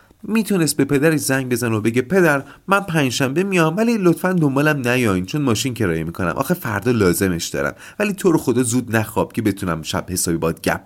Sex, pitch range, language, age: male, 95-155 Hz, Persian, 40-59